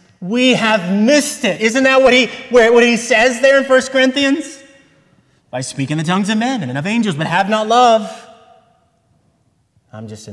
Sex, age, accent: male, 30-49, American